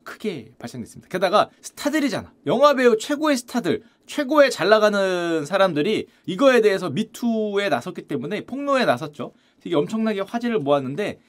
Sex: male